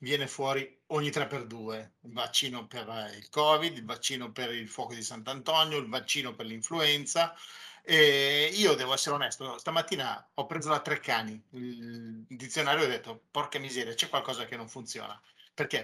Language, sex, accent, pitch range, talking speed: Italian, male, native, 125-165 Hz, 175 wpm